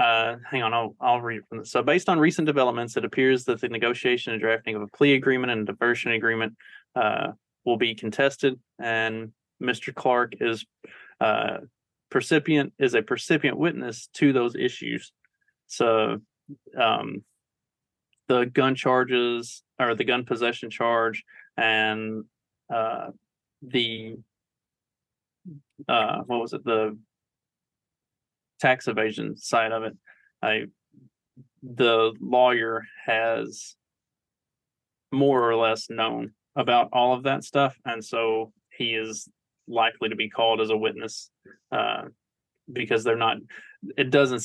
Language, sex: English, male